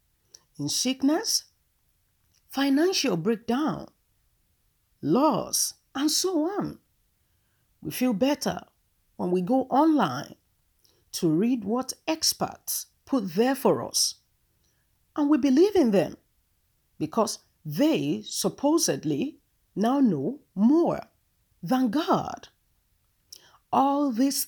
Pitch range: 205-295 Hz